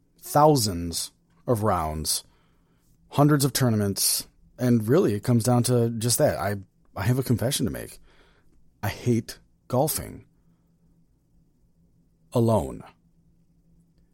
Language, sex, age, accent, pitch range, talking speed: English, male, 30-49, American, 105-150 Hz, 105 wpm